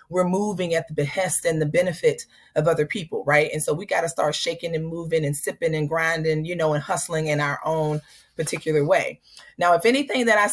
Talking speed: 220 wpm